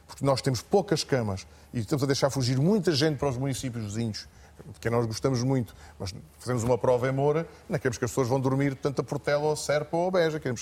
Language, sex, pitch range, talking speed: Portuguese, male, 115-140 Hz, 250 wpm